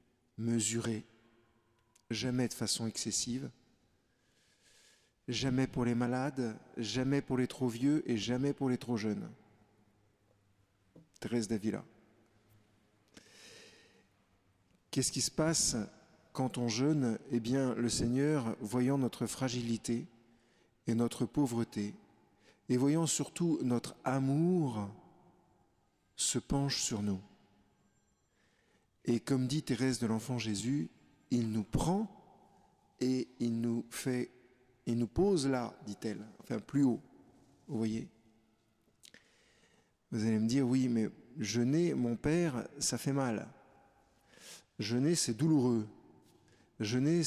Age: 50-69